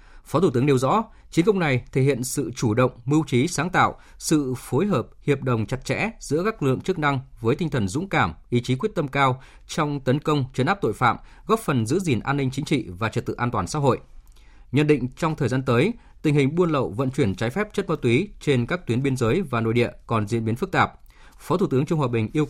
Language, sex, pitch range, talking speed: Vietnamese, male, 120-160 Hz, 265 wpm